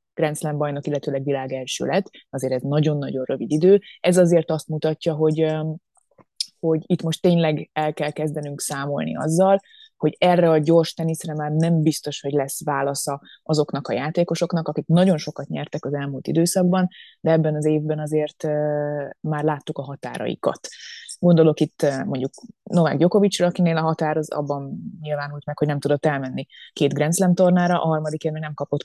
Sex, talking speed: female, 160 wpm